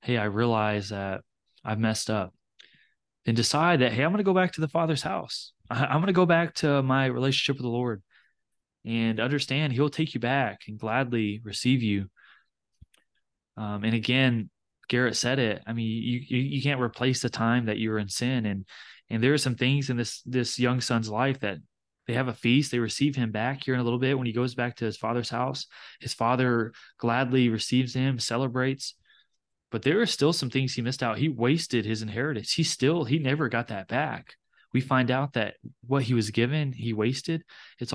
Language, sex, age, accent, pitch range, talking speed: English, male, 20-39, American, 110-135 Hz, 210 wpm